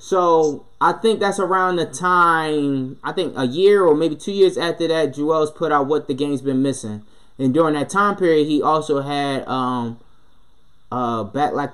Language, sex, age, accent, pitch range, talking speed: English, male, 20-39, American, 135-170 Hz, 190 wpm